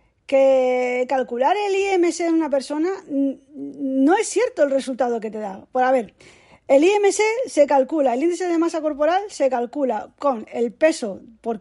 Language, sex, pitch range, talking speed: Spanish, female, 255-320 Hz, 180 wpm